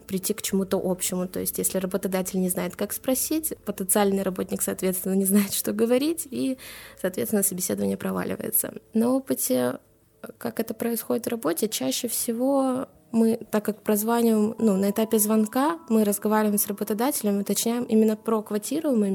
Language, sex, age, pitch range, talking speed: Russian, female, 20-39, 185-230 Hz, 150 wpm